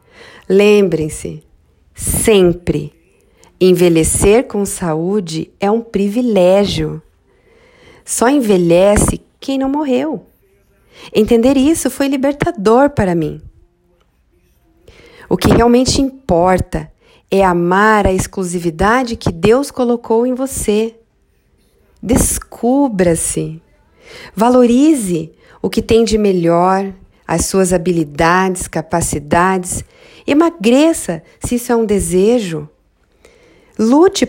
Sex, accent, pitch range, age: female, Brazilian, 165-240 Hz, 40-59